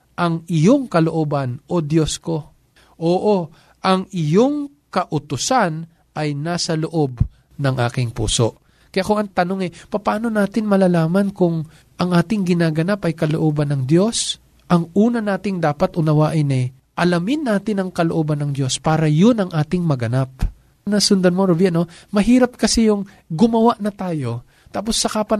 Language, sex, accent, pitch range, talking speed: Filipino, male, native, 160-210 Hz, 145 wpm